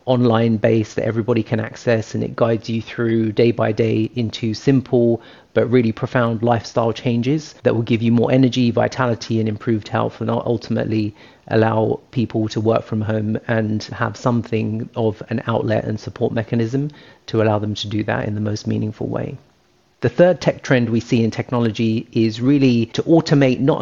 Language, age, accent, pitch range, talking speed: English, 40-59, British, 110-125 Hz, 180 wpm